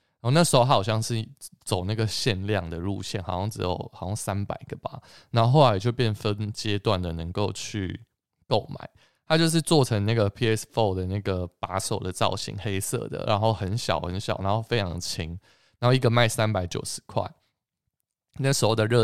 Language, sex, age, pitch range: Chinese, male, 20-39, 95-115 Hz